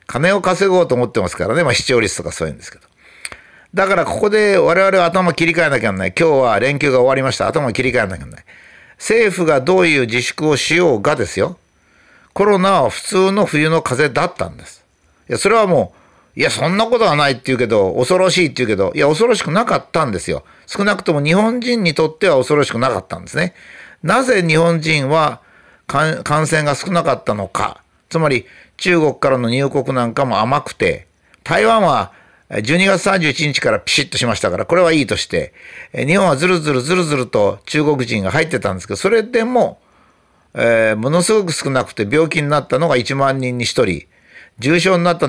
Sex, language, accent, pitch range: male, Japanese, native, 130-185 Hz